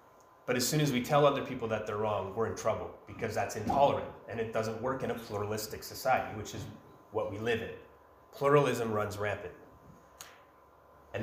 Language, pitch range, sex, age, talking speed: English, 110-135 Hz, male, 30-49, 185 wpm